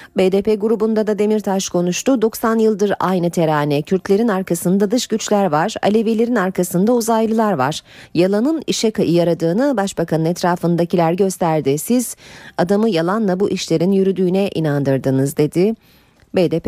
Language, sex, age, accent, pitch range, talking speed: Turkish, female, 30-49, native, 165-215 Hz, 120 wpm